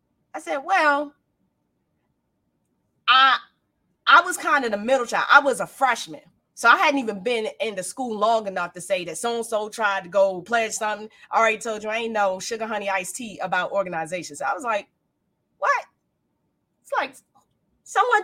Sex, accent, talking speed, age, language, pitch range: female, American, 180 wpm, 20-39, English, 195-265 Hz